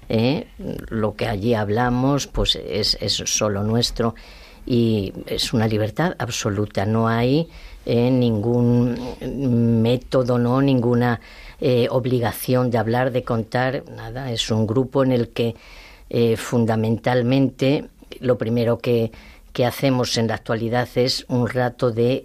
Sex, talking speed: female, 130 wpm